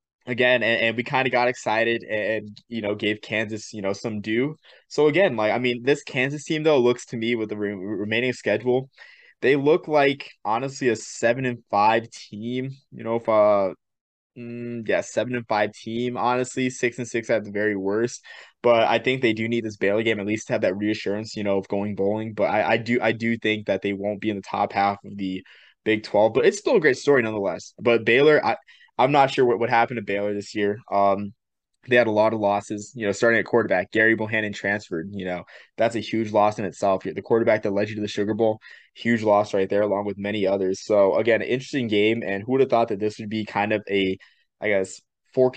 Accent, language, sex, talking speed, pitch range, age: American, English, male, 240 wpm, 105-125 Hz, 20-39